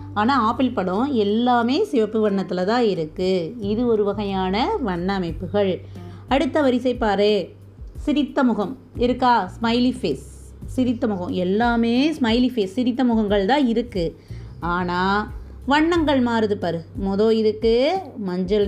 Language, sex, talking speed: Tamil, female, 115 wpm